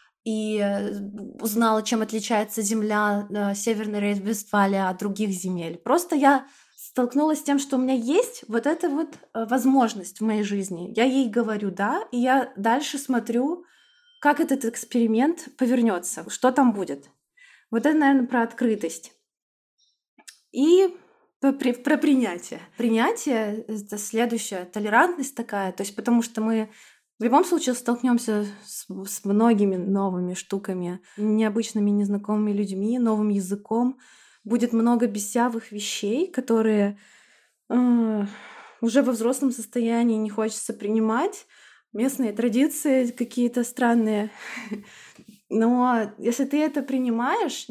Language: Russian